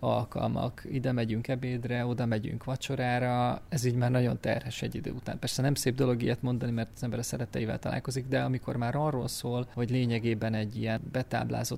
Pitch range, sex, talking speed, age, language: 115-135 Hz, male, 185 wpm, 20-39, Hungarian